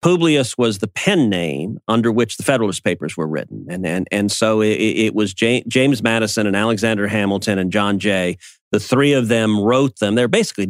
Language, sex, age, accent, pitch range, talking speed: English, male, 40-59, American, 110-140 Hz, 195 wpm